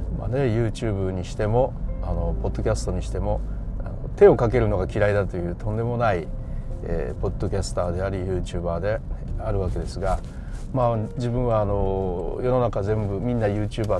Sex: male